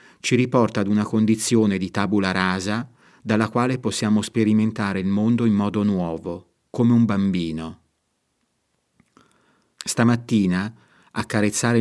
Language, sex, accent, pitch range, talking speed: Italian, male, native, 95-115 Hz, 110 wpm